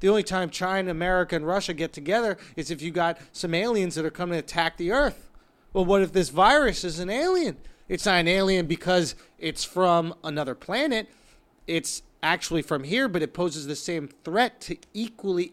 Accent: American